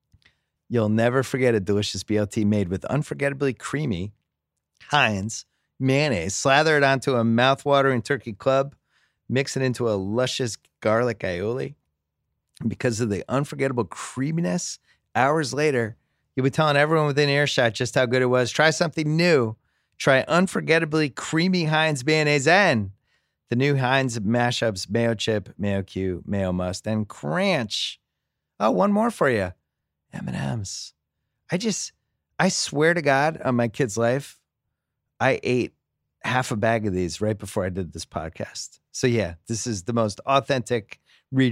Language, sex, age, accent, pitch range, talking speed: English, male, 30-49, American, 100-145 Hz, 150 wpm